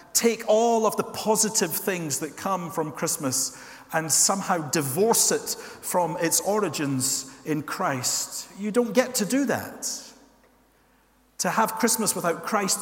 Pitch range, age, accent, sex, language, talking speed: 140-215 Hz, 50-69, British, male, English, 140 wpm